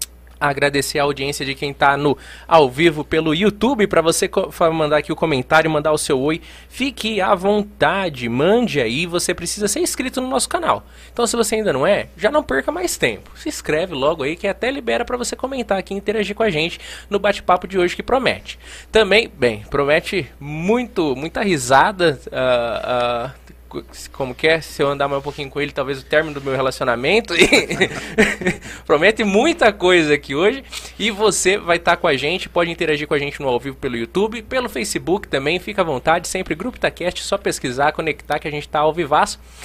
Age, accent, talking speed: 20-39, Brazilian, 195 wpm